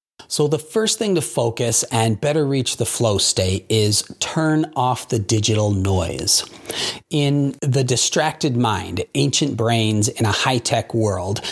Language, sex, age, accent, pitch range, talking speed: English, male, 40-59, American, 110-140 Hz, 145 wpm